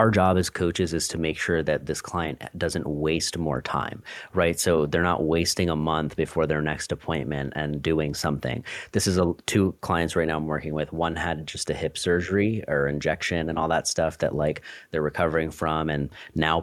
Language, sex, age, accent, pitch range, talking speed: English, male, 30-49, American, 75-85 Hz, 210 wpm